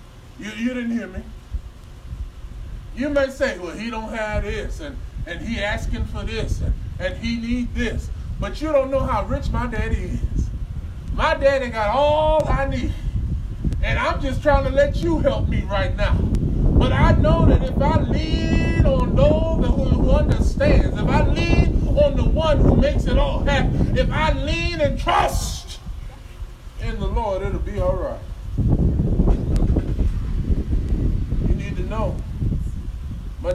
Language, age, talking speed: English, 20-39, 155 wpm